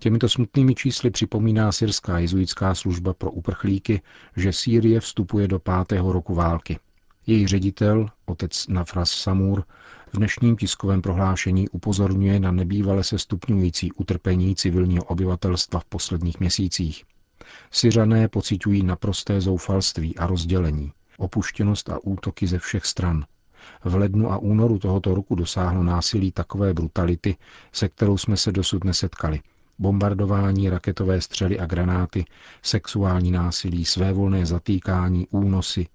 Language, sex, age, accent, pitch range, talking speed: Czech, male, 40-59, native, 90-100 Hz, 125 wpm